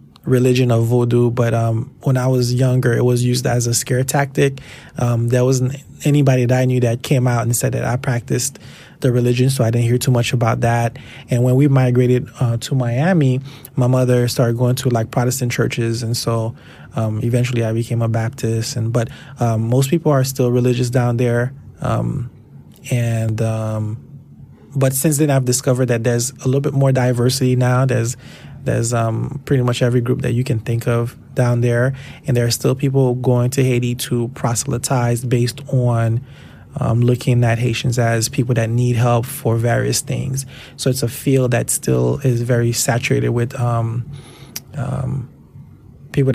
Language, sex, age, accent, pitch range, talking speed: English, male, 20-39, American, 120-130 Hz, 185 wpm